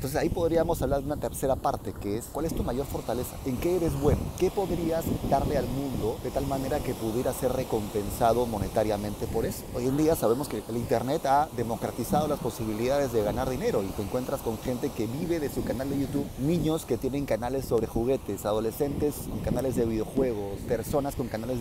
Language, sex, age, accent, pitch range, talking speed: Spanish, male, 30-49, Mexican, 115-155 Hz, 205 wpm